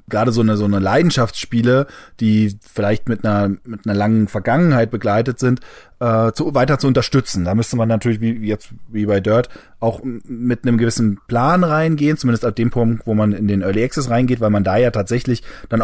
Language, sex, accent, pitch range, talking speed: German, male, German, 110-135 Hz, 205 wpm